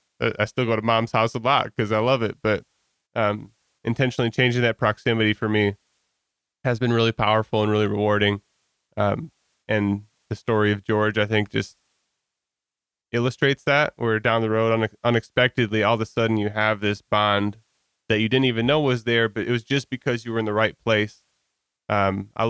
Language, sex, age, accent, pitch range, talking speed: English, male, 20-39, American, 105-115 Hz, 190 wpm